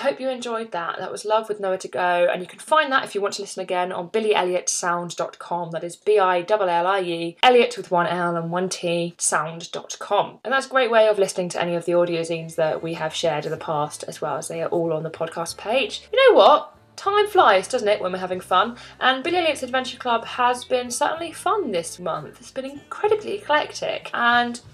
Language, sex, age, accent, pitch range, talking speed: English, female, 20-39, British, 180-260 Hz, 225 wpm